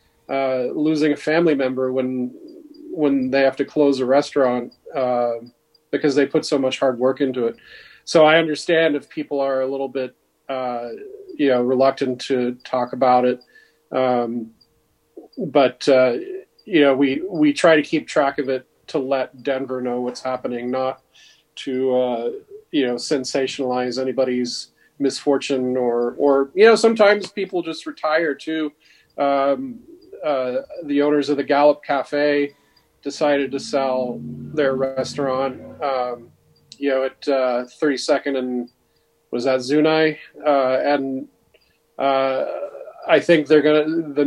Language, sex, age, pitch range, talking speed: English, male, 40-59, 130-150 Hz, 145 wpm